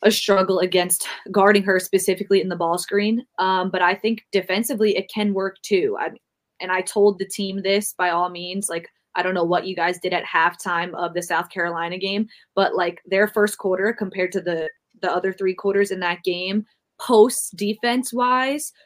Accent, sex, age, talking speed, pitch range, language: American, female, 20-39, 195 wpm, 185-220 Hz, English